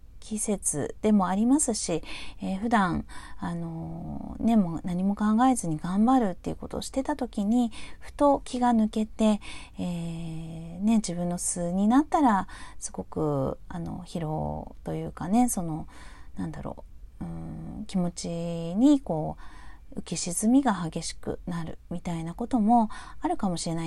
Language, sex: Japanese, female